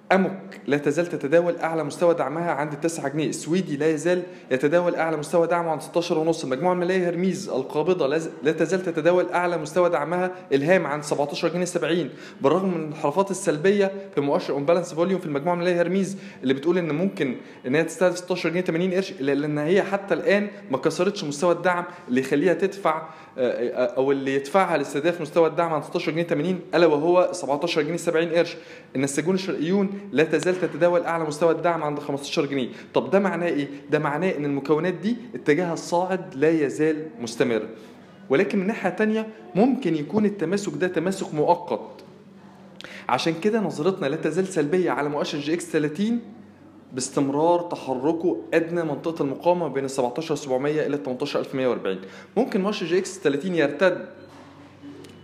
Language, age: Arabic, 20-39